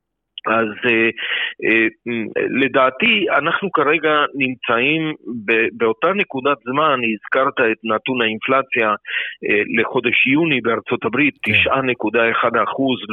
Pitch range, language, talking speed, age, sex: 115-145 Hz, Hebrew, 80 wpm, 50-69, male